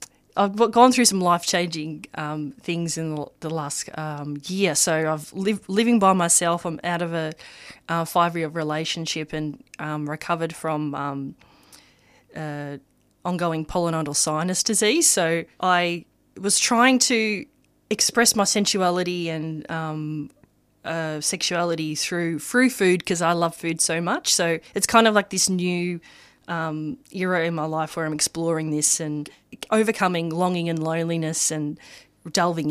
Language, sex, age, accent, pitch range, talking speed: English, female, 20-39, Australian, 150-180 Hz, 150 wpm